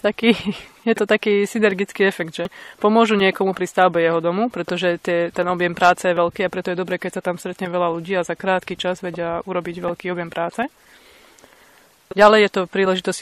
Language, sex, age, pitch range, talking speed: Slovak, female, 20-39, 175-195 Hz, 185 wpm